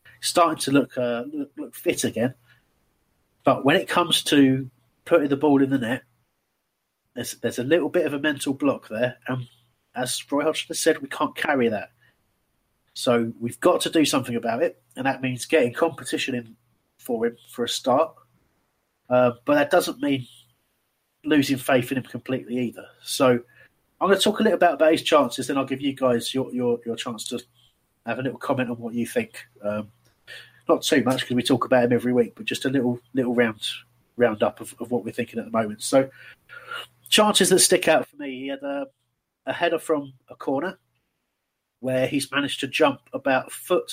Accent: British